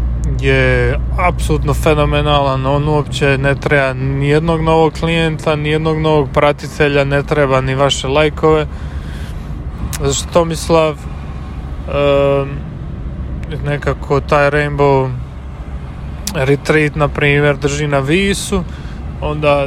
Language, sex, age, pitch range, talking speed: Croatian, male, 20-39, 130-155 Hz, 100 wpm